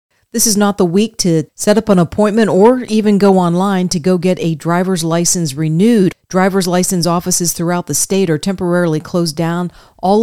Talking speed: 190 wpm